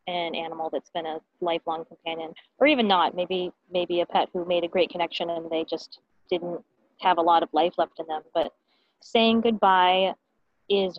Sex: female